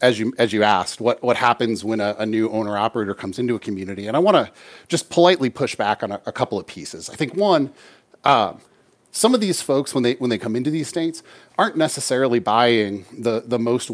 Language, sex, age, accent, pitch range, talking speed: English, male, 40-59, American, 105-130 Hz, 230 wpm